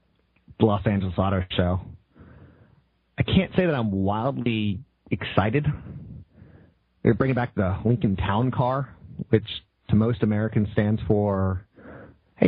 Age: 30-49